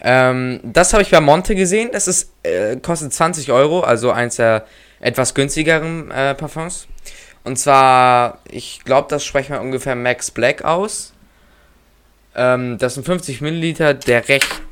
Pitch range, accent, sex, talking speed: 115-140 Hz, German, male, 150 wpm